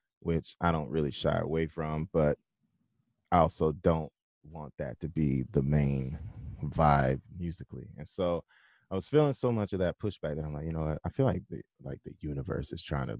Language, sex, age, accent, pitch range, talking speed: English, male, 20-39, American, 75-95 Hz, 200 wpm